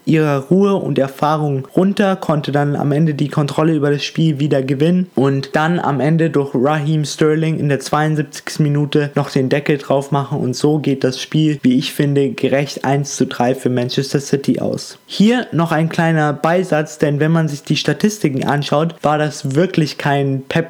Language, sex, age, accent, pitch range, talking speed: German, male, 20-39, German, 140-165 Hz, 190 wpm